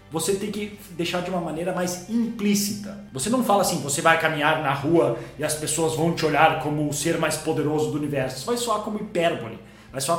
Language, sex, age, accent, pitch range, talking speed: Portuguese, male, 30-49, Brazilian, 150-185 Hz, 225 wpm